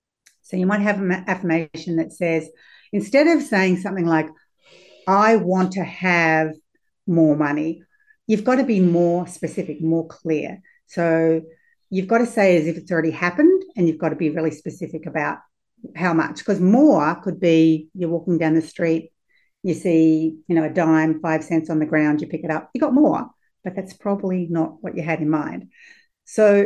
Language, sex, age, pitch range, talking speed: English, female, 60-79, 160-200 Hz, 190 wpm